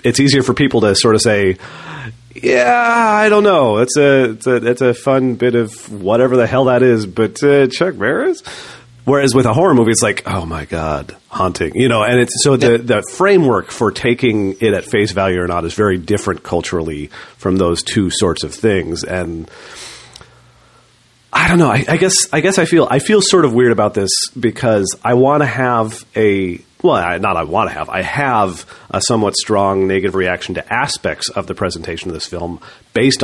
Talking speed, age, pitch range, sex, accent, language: 205 wpm, 40-59, 90-125 Hz, male, American, English